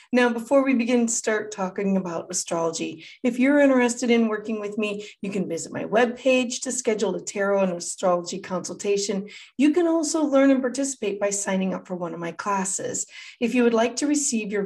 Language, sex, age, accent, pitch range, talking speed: English, female, 30-49, American, 190-250 Hz, 200 wpm